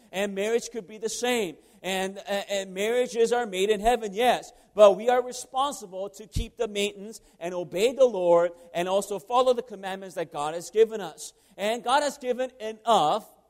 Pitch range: 195-240 Hz